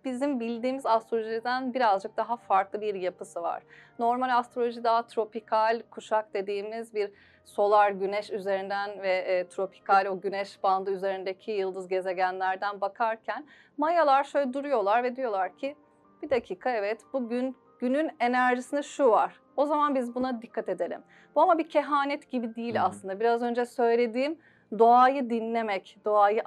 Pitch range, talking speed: 205-265 Hz, 140 wpm